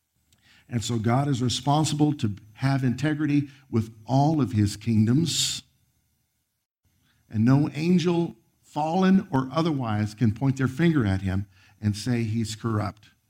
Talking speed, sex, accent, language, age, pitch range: 130 wpm, male, American, English, 50-69, 110-145 Hz